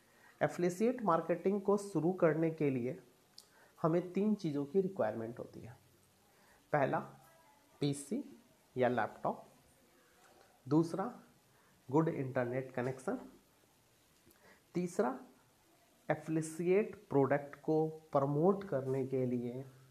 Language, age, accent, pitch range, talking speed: Hindi, 30-49, native, 130-180 Hz, 90 wpm